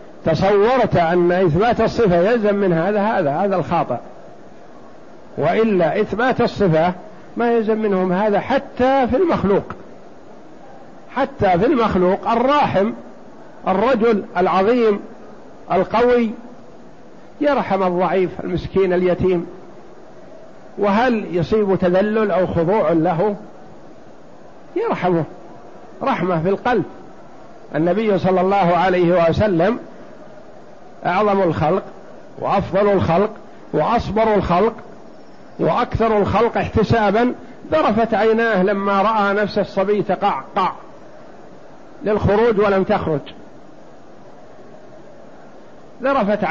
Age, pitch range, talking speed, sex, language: 50-69, 180-225 Hz, 85 wpm, male, Arabic